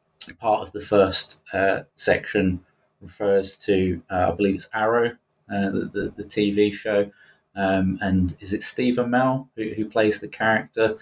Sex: male